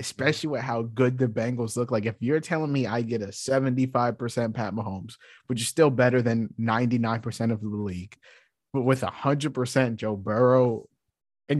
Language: English